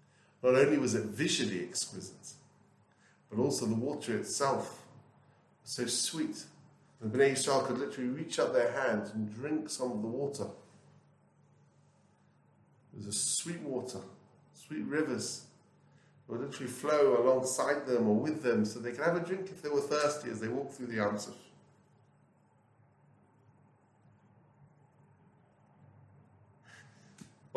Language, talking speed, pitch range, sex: English, 135 wpm, 115-145 Hz, male